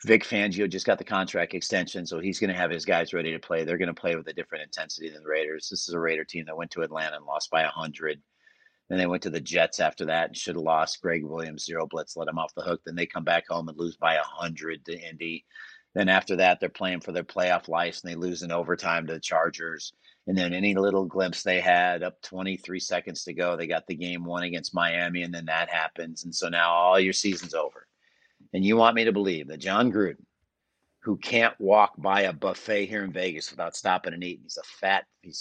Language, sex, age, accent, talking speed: English, male, 40-59, American, 250 wpm